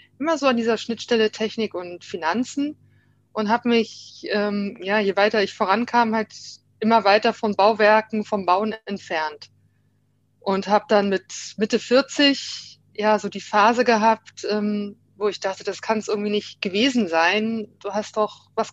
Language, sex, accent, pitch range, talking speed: German, female, German, 205-235 Hz, 165 wpm